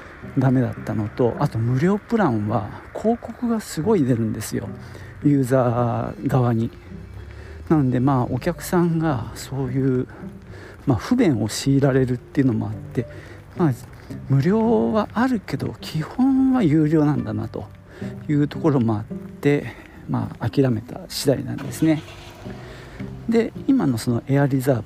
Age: 50-69